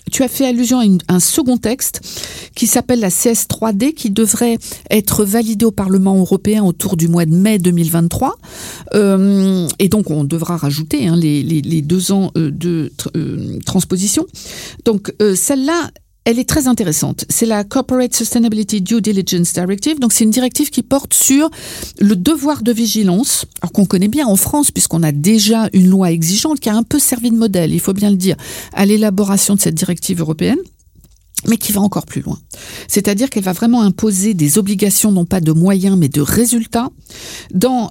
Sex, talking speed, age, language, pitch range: female, 185 wpm, 50-69, French, 180-235 Hz